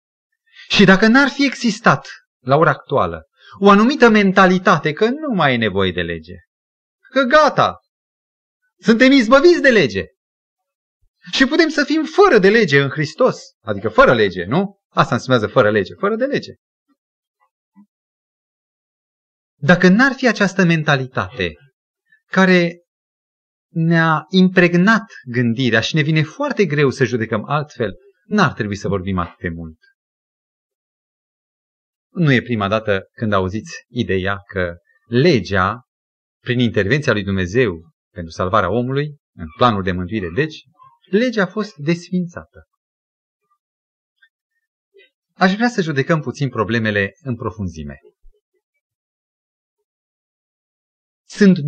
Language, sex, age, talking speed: Romanian, male, 30-49, 120 wpm